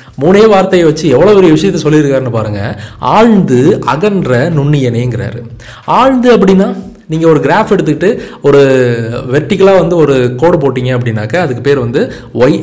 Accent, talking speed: native, 135 wpm